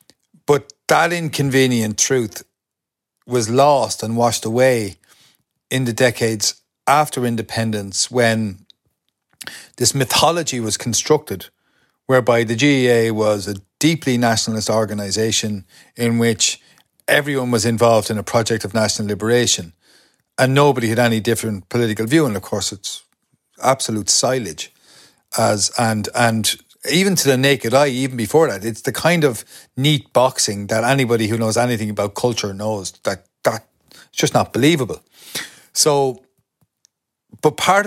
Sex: male